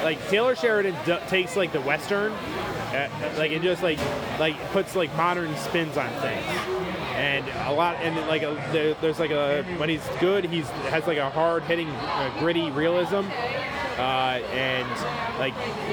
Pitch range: 150-190 Hz